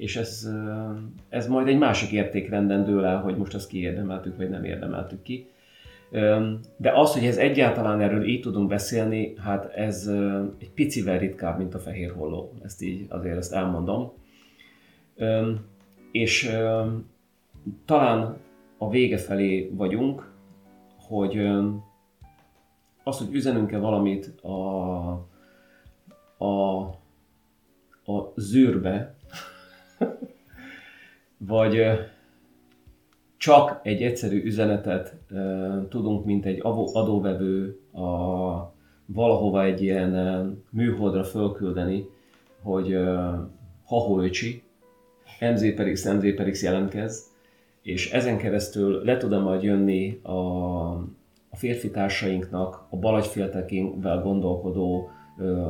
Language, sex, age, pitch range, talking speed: Hungarian, male, 30-49, 90-110 Hz, 100 wpm